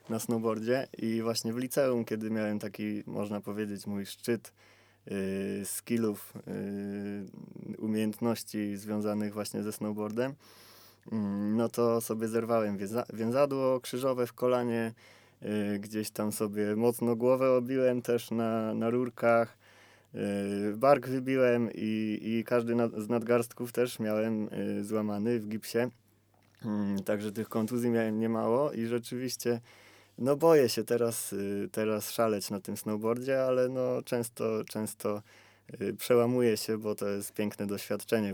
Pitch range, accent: 105-120 Hz, native